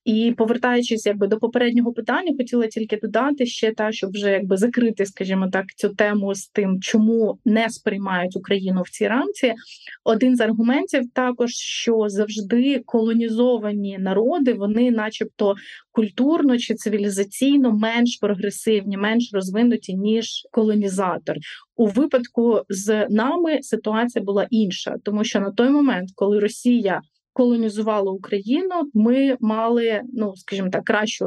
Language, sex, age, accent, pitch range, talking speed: Ukrainian, female, 20-39, native, 205-245 Hz, 130 wpm